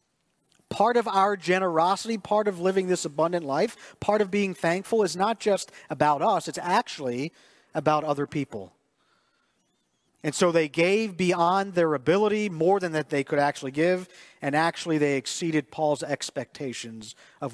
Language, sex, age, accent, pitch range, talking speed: English, male, 40-59, American, 140-190 Hz, 155 wpm